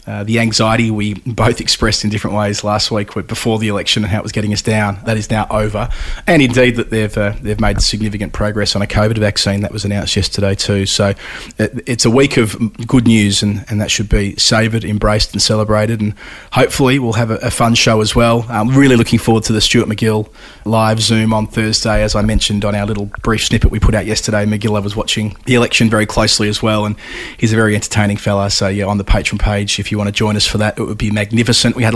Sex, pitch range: male, 105-115 Hz